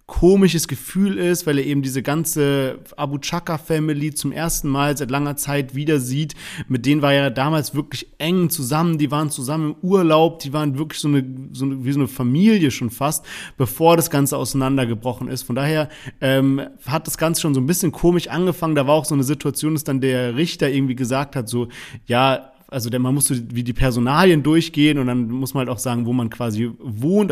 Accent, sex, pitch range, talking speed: German, male, 135-165 Hz, 210 wpm